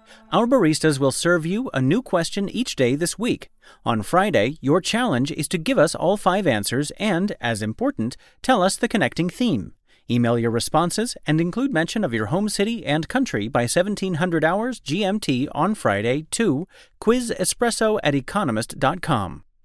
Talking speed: 155 wpm